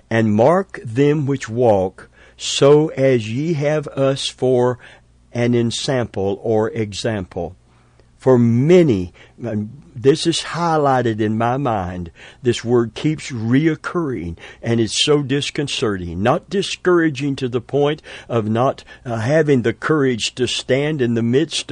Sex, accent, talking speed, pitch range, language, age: male, American, 130 wpm, 110-140 Hz, English, 50-69